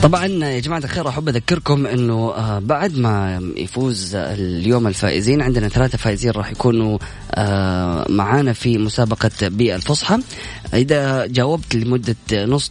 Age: 20-39